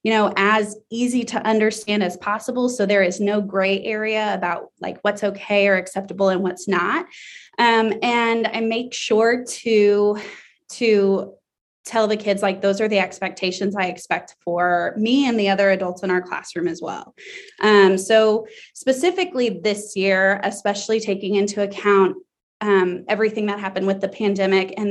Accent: American